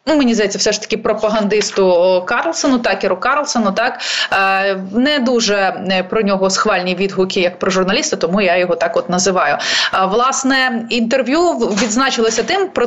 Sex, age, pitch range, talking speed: female, 20-39, 190-240 Hz, 140 wpm